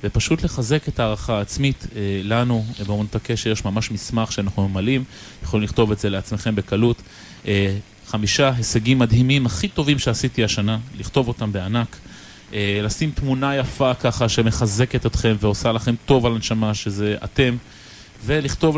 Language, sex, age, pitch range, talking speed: Hebrew, male, 20-39, 105-125 Hz, 145 wpm